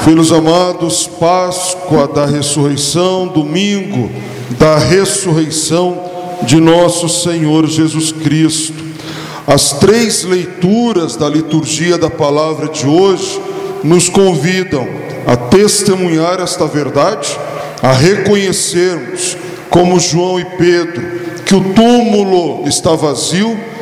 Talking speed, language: 100 wpm, Portuguese